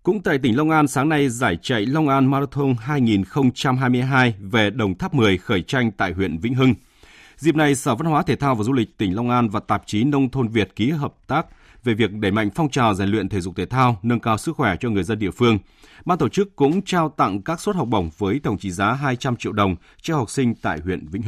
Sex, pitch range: male, 100-140 Hz